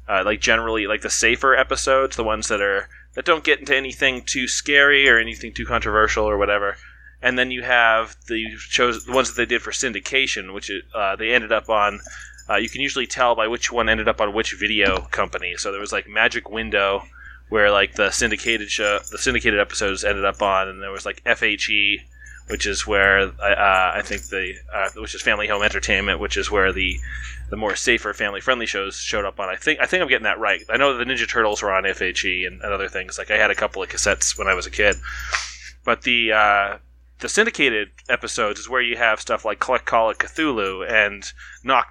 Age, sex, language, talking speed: 20-39, male, English, 220 wpm